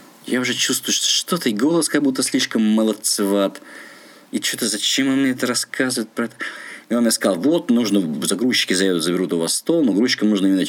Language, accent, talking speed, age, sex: Russian, native, 195 wpm, 20-39, male